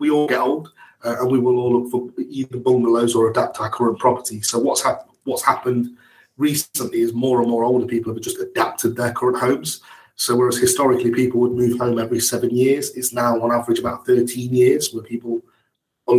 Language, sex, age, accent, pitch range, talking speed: English, male, 30-49, British, 115-125 Hz, 210 wpm